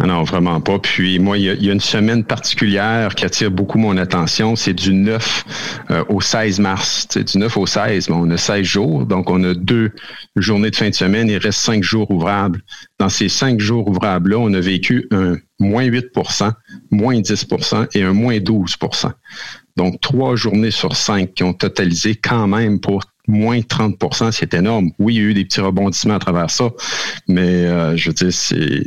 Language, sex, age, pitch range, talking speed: French, male, 50-69, 90-110 Hz, 195 wpm